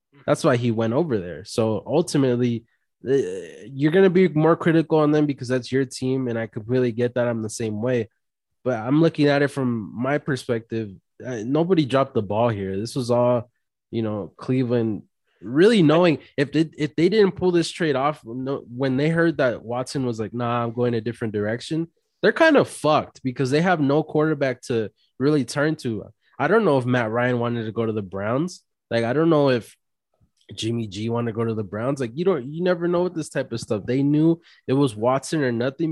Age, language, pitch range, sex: 20-39, English, 115-145 Hz, male